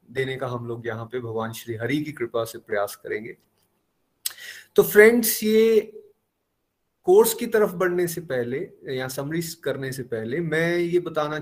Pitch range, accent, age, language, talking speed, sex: 125-170 Hz, native, 30-49, Hindi, 175 wpm, male